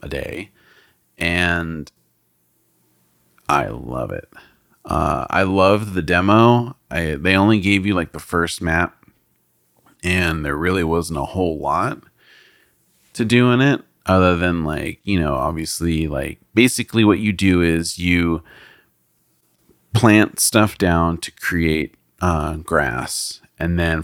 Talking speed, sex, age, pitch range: 130 wpm, male, 30-49, 80-95 Hz